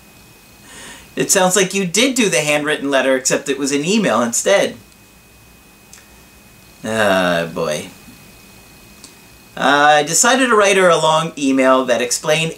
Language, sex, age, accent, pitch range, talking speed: English, male, 40-59, American, 125-190 Hz, 140 wpm